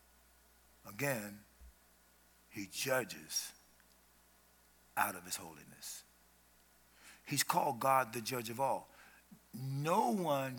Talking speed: 90 wpm